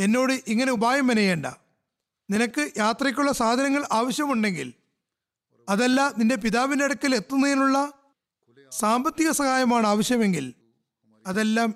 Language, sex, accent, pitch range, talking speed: Malayalam, male, native, 190-260 Hz, 85 wpm